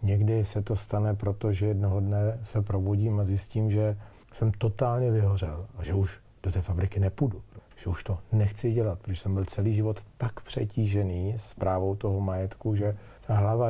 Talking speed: 180 wpm